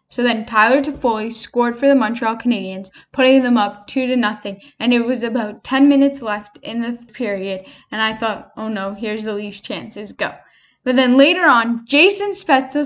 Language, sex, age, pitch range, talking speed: English, female, 10-29, 220-270 Hz, 190 wpm